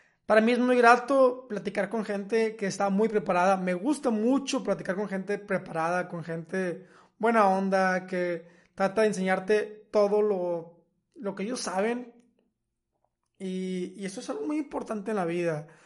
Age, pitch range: 20-39, 180-215 Hz